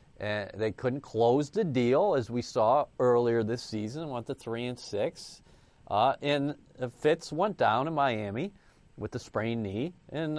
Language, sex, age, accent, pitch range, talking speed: English, male, 40-59, American, 125-170 Hz, 170 wpm